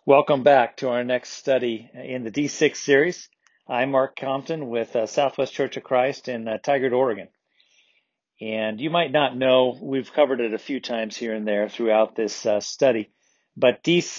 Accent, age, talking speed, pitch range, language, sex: American, 40-59, 180 wpm, 115-145 Hz, English, male